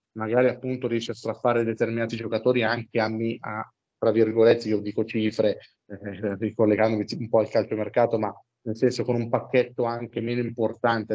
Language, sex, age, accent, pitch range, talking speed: Italian, male, 30-49, native, 110-125 Hz, 165 wpm